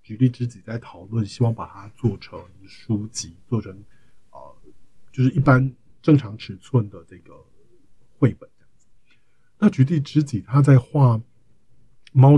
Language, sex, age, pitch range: Chinese, male, 50-69, 110-135 Hz